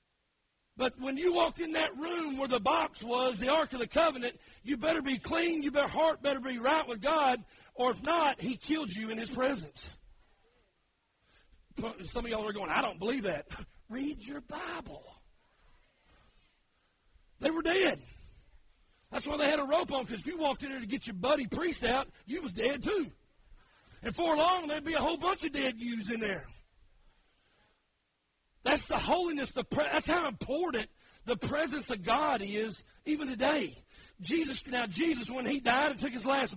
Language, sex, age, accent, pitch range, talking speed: English, male, 40-59, American, 250-315 Hz, 185 wpm